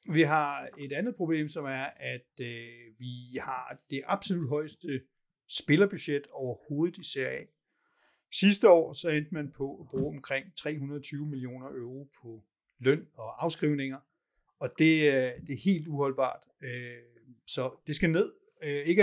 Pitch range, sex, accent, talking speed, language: 130-170 Hz, male, native, 150 wpm, Danish